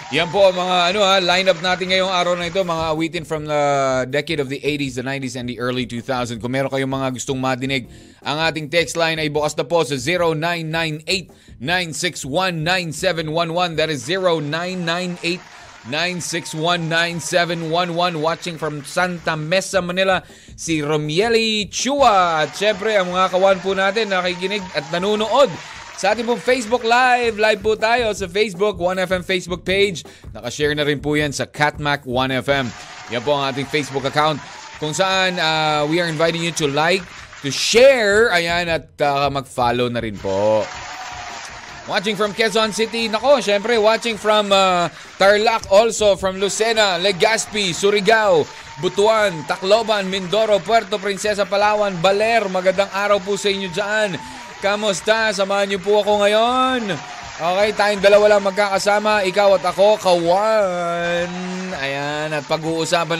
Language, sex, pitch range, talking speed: Filipino, male, 150-205 Hz, 145 wpm